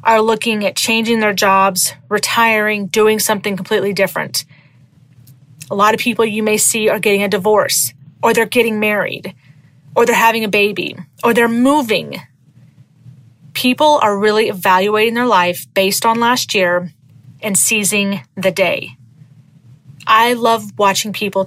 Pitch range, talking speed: 165-230 Hz, 145 wpm